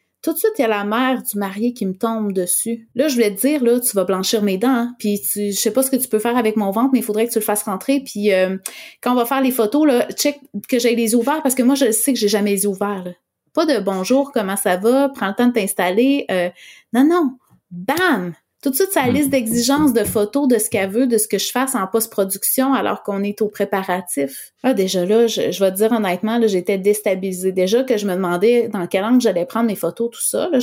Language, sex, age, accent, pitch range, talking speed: French, female, 30-49, Canadian, 200-265 Hz, 265 wpm